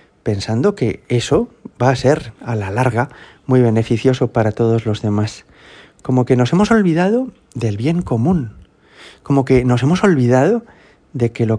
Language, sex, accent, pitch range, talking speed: Spanish, male, Spanish, 115-155 Hz, 160 wpm